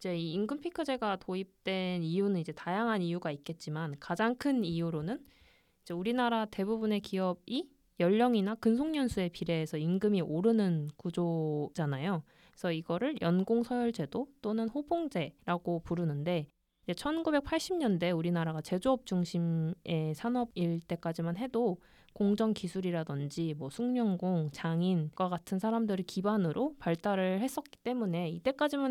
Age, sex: 20-39, female